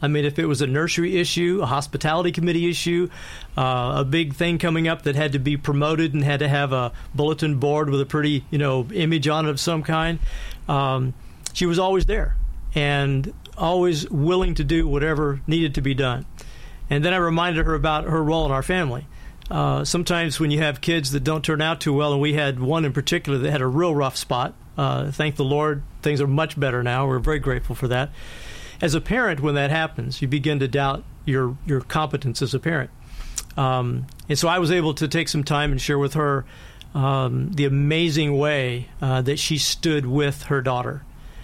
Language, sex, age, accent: English, male, 40-59, American